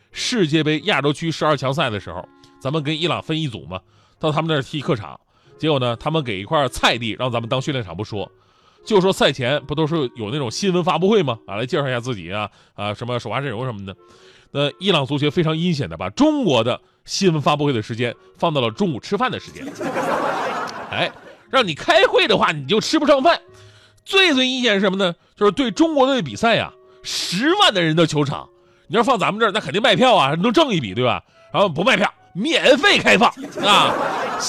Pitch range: 130-205 Hz